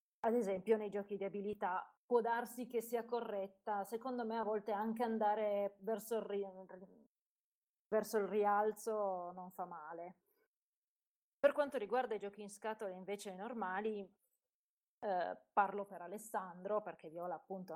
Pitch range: 190-220 Hz